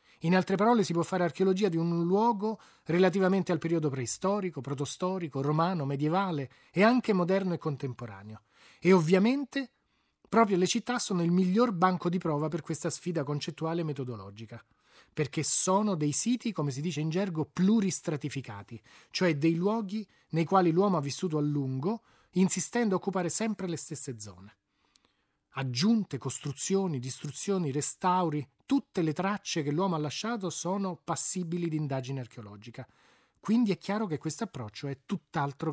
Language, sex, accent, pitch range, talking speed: Italian, male, native, 140-195 Hz, 150 wpm